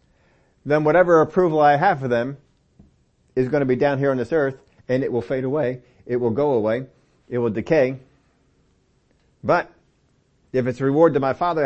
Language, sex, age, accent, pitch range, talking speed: English, male, 50-69, American, 125-150 Hz, 185 wpm